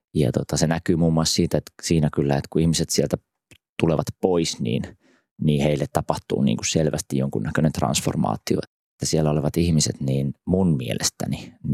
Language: Finnish